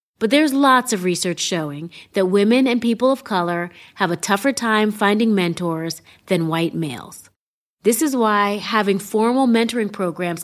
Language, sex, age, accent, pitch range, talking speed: English, female, 30-49, American, 185-235 Hz, 160 wpm